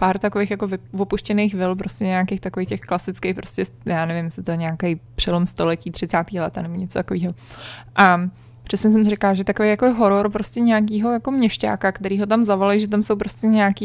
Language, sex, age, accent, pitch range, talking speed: Czech, female, 20-39, native, 180-220 Hz, 195 wpm